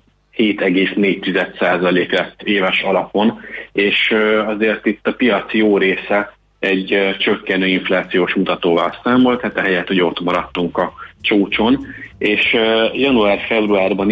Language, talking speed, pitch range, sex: Hungarian, 110 wpm, 90-110 Hz, male